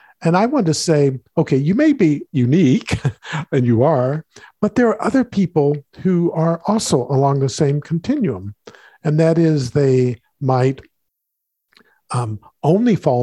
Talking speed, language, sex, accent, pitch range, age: 150 wpm, English, male, American, 130-180 Hz, 50-69